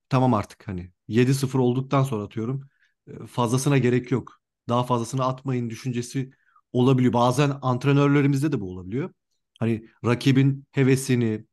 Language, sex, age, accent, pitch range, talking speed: Turkish, male, 40-59, native, 115-145 Hz, 120 wpm